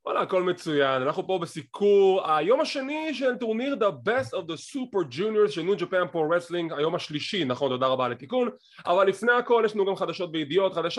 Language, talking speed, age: English, 170 wpm, 20-39